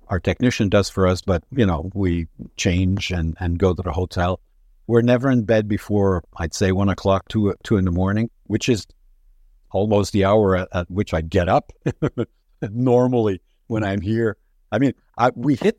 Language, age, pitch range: English, 60-79, 95-120 Hz